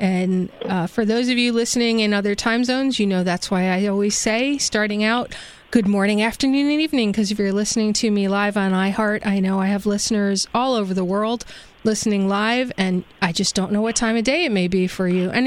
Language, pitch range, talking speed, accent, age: English, 200-245 Hz, 235 wpm, American, 30-49